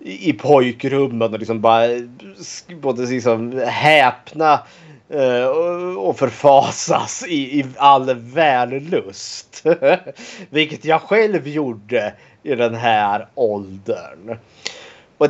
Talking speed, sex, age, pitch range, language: 85 wpm, male, 30-49, 120-155 Hz, Swedish